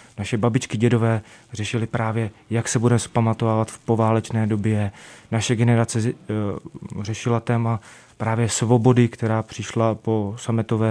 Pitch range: 110-130 Hz